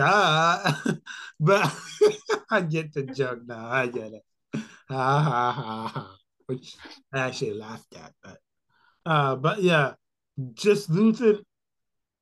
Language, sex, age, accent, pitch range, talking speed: English, male, 20-39, American, 120-145 Hz, 105 wpm